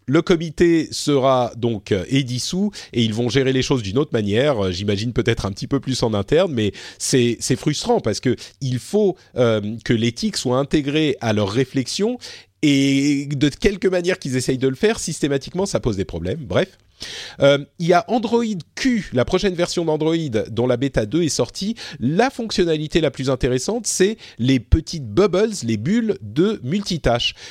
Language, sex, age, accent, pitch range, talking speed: French, male, 40-59, French, 120-185 Hz, 175 wpm